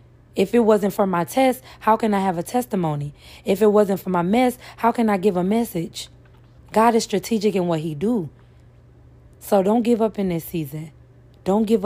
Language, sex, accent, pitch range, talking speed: English, female, American, 150-190 Hz, 200 wpm